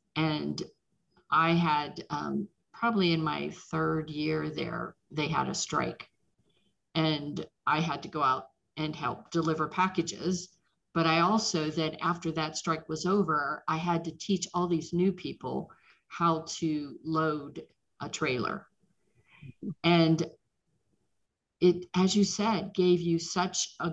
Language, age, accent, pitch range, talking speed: English, 50-69, American, 155-180 Hz, 140 wpm